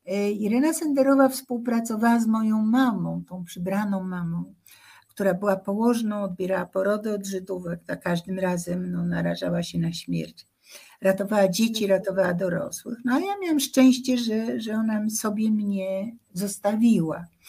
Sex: female